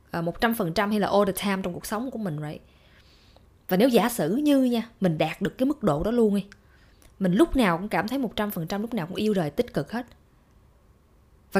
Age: 20-39